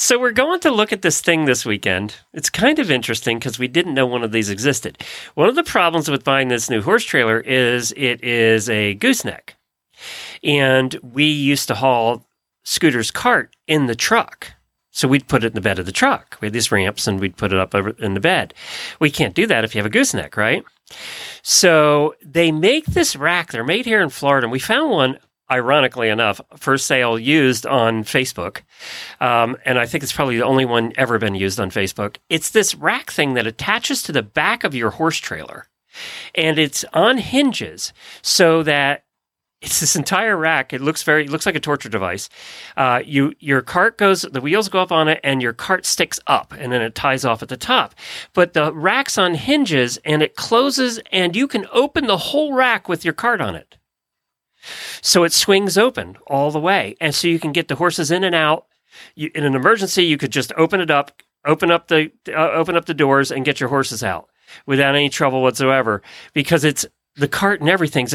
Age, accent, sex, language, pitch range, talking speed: 40-59, American, male, English, 125-170 Hz, 210 wpm